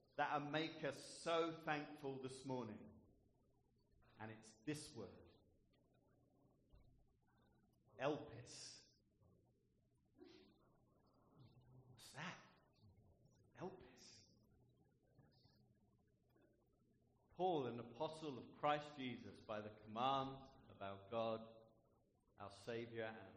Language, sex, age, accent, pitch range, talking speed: English, male, 50-69, British, 110-155 Hz, 75 wpm